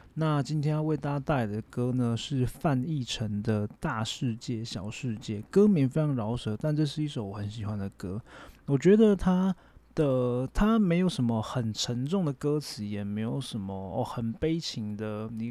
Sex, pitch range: male, 110-145 Hz